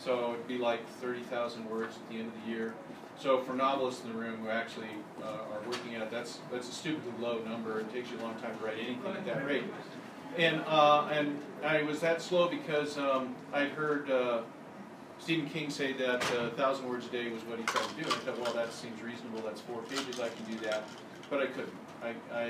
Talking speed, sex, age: 225 wpm, male, 40-59